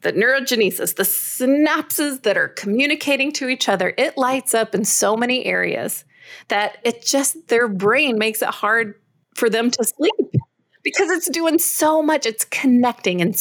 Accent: American